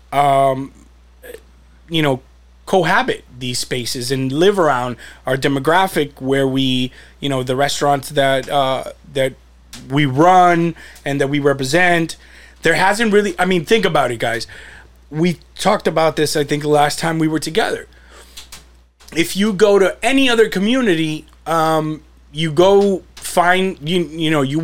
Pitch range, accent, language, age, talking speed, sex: 140-180 Hz, American, English, 30-49, 150 wpm, male